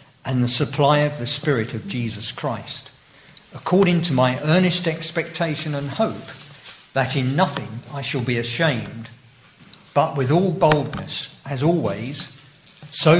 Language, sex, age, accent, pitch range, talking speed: English, male, 50-69, British, 125-160 Hz, 135 wpm